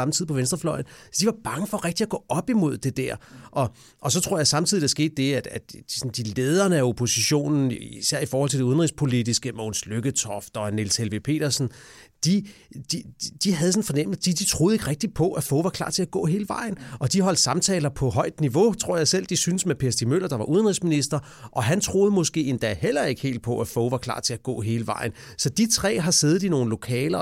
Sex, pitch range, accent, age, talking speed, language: male, 120-165 Hz, Danish, 30-49, 240 wpm, English